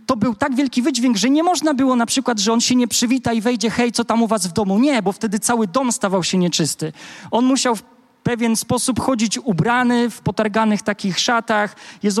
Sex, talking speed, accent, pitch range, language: male, 220 wpm, native, 195-245 Hz, Polish